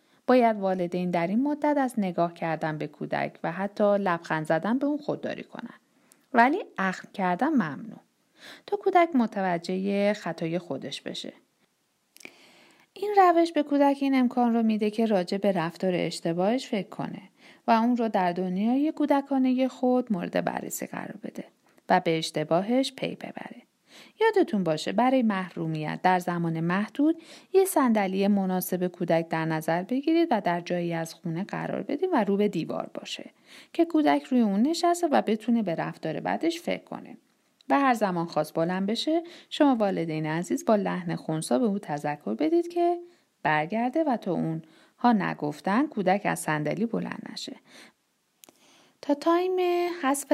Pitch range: 180-280 Hz